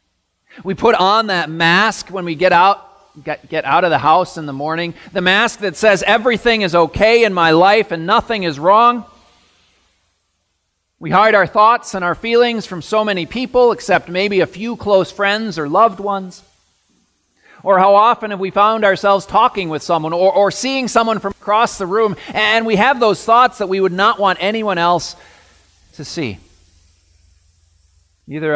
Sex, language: male, English